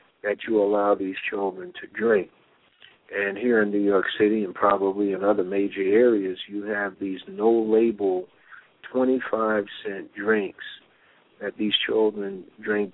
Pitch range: 100-125 Hz